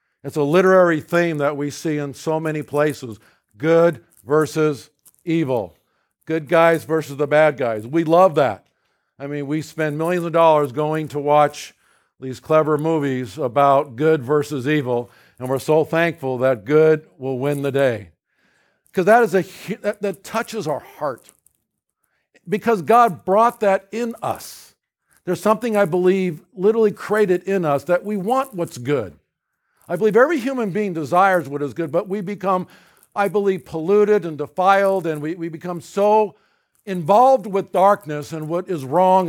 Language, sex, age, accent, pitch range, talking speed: English, male, 50-69, American, 150-200 Hz, 165 wpm